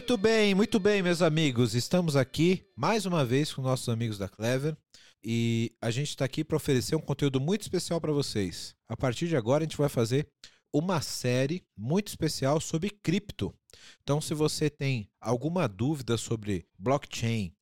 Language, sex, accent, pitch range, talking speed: Portuguese, male, Brazilian, 120-165 Hz, 175 wpm